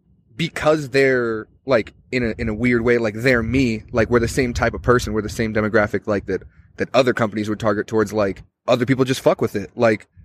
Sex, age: male, 20-39